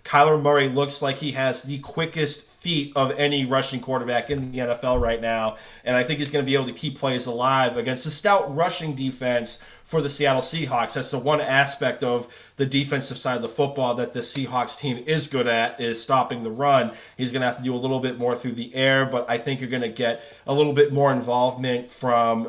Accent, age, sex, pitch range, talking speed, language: American, 30-49, male, 120-145 Hz, 230 wpm, English